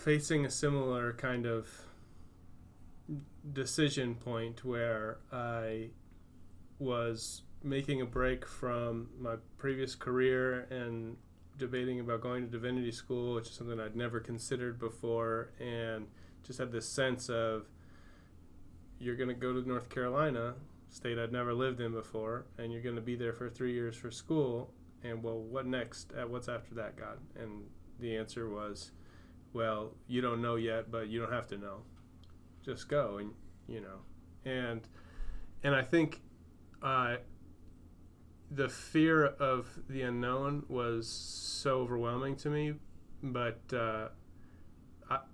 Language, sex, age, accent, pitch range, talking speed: English, male, 20-39, American, 95-125 Hz, 145 wpm